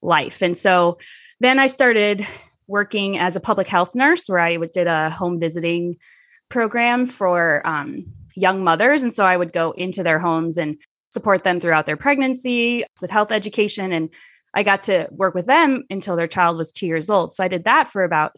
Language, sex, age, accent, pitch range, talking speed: English, female, 20-39, American, 180-250 Hz, 195 wpm